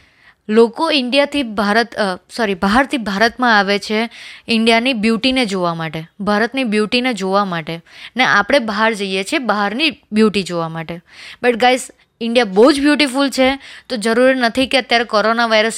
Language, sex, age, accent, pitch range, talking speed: Gujarati, female, 20-39, native, 210-255 Hz, 150 wpm